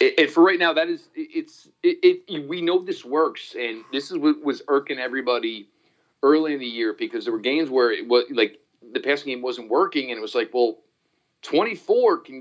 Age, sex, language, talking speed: 40-59, male, English, 215 wpm